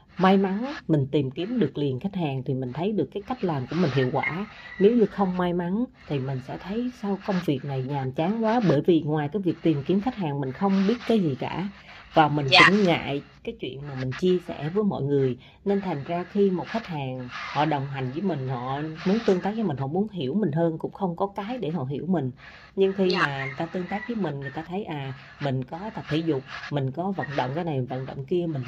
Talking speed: 255 wpm